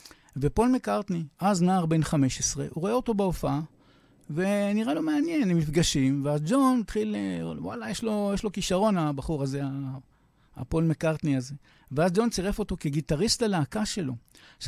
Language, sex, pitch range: English, male, 145-200 Hz